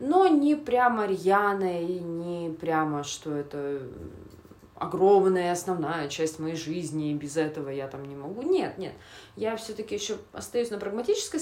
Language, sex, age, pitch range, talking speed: Russian, female, 20-39, 155-215 Hz, 150 wpm